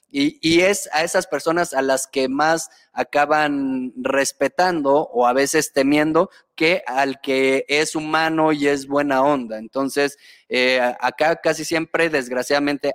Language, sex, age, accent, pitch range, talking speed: Spanish, male, 30-49, Mexican, 130-160 Hz, 145 wpm